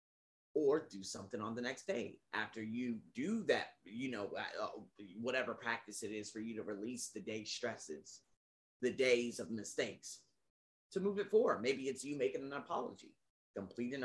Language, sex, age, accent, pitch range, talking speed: English, male, 30-49, American, 110-180 Hz, 165 wpm